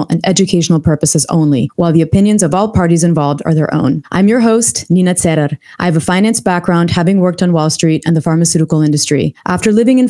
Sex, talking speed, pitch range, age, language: female, 215 wpm, 155-190 Hz, 30-49, English